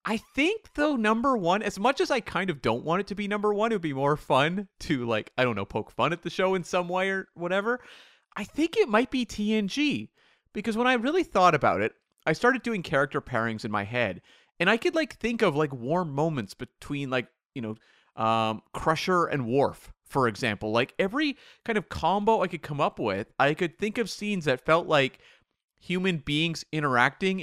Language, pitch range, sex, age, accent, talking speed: English, 125-195 Hz, male, 30-49, American, 215 wpm